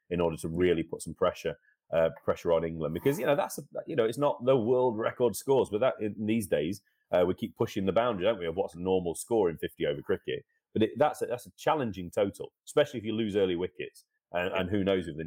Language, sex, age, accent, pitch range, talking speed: English, male, 30-49, British, 100-160 Hz, 255 wpm